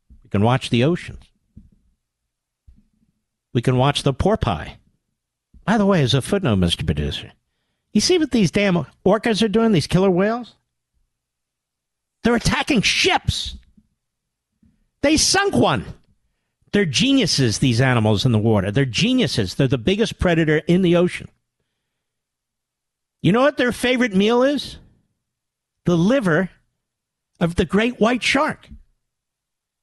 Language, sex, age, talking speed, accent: English, male, 50-69, 130 wpm, American